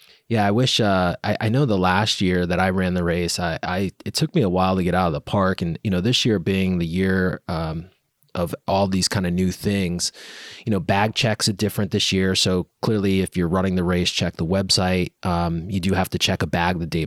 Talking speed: 255 wpm